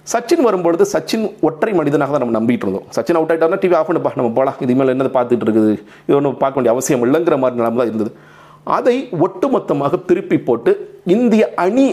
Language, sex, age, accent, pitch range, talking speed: Tamil, male, 40-59, native, 115-155 Hz, 180 wpm